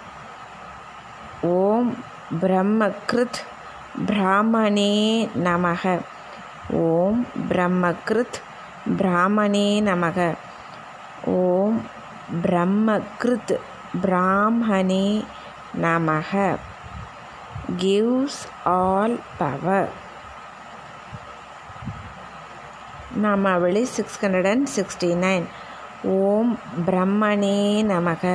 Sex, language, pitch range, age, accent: female, Tamil, 180-210 Hz, 20-39, native